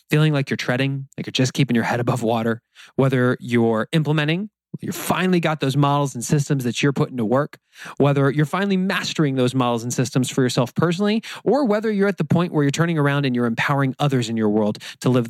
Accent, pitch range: American, 120-150 Hz